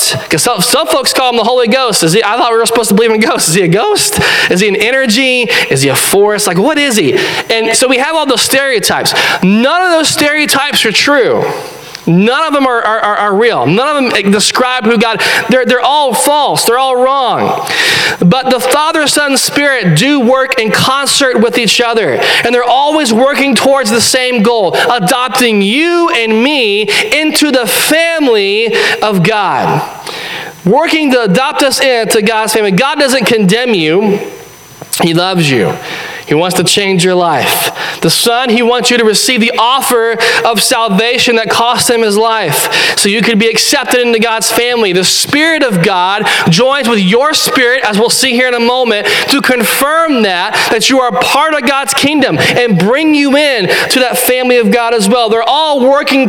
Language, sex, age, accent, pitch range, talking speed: English, male, 20-39, American, 225-280 Hz, 190 wpm